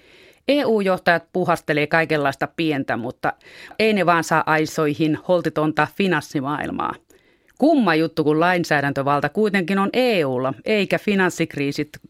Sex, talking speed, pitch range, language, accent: female, 105 wpm, 155-195 Hz, Finnish, native